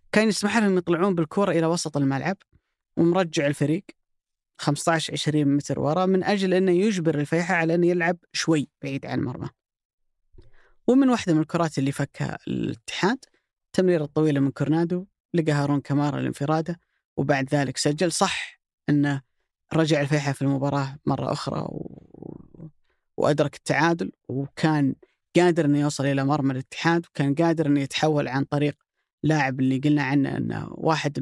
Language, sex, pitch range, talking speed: Arabic, female, 145-175 Hz, 140 wpm